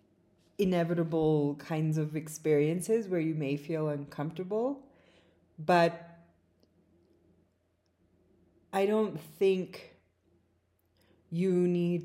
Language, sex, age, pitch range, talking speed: English, female, 20-39, 150-180 Hz, 75 wpm